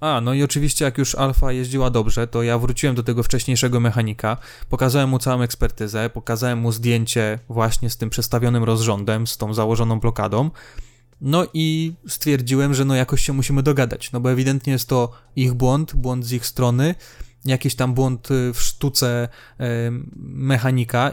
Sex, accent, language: male, native, Polish